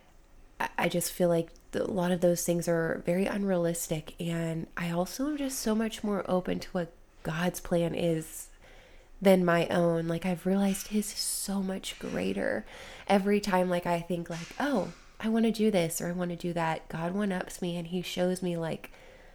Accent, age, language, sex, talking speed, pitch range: American, 20-39, English, female, 195 wpm, 165-185 Hz